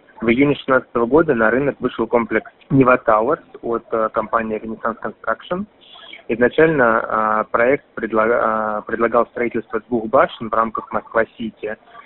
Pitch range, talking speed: 110-125 Hz, 115 wpm